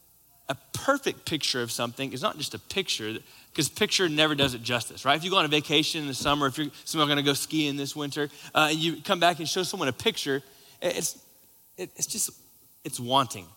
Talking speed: 220 wpm